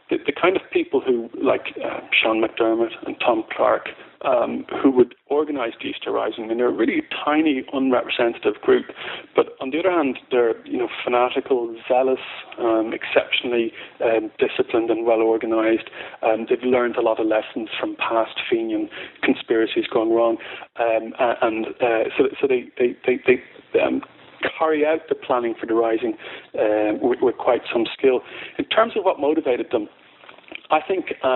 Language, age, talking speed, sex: English, 40-59, 170 wpm, male